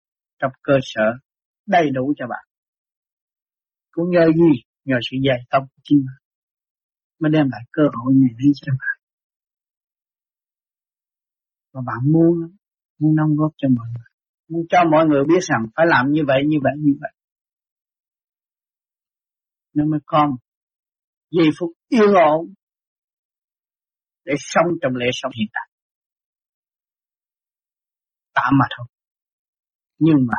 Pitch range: 130-170 Hz